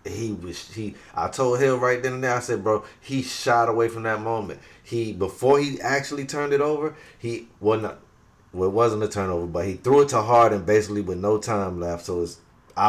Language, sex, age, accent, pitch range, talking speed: English, male, 30-49, American, 105-130 Hz, 225 wpm